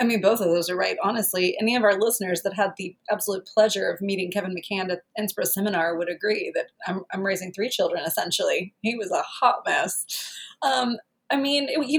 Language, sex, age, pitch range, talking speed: English, female, 30-49, 175-210 Hz, 215 wpm